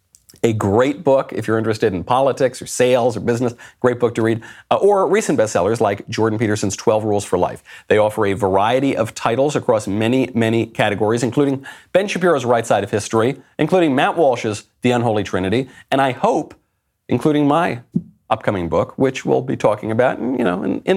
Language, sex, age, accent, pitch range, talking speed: English, male, 40-59, American, 105-150 Hz, 185 wpm